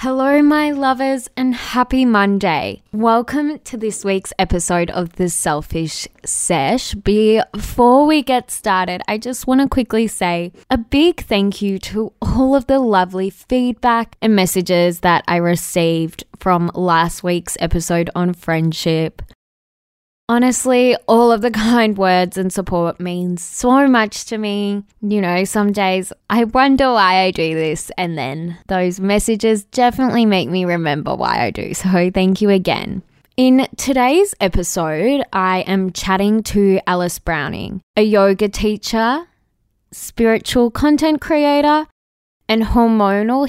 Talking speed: 140 wpm